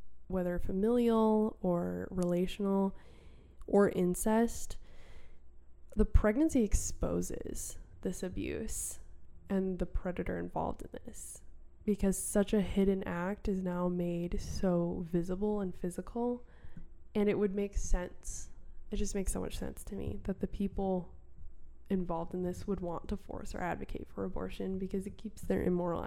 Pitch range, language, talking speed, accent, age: 170-205 Hz, English, 140 wpm, American, 10-29